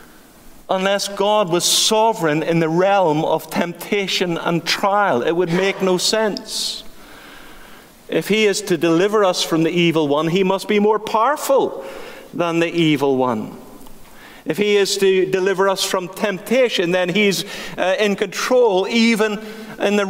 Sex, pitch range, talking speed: male, 160-215 Hz, 150 wpm